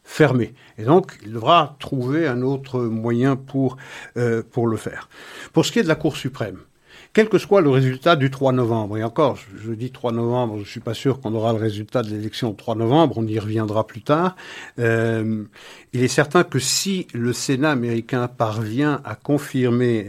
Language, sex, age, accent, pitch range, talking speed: French, male, 60-79, French, 110-135 Hz, 200 wpm